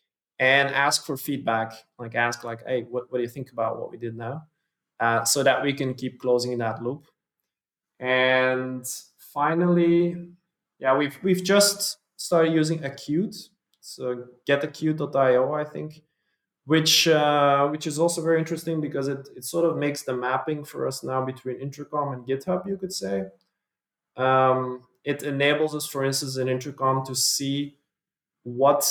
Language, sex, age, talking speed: English, male, 20-39, 160 wpm